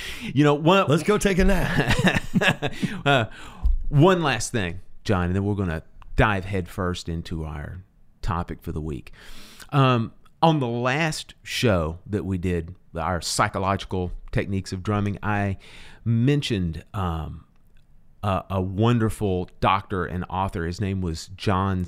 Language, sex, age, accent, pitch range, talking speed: English, male, 40-59, American, 95-150 Hz, 145 wpm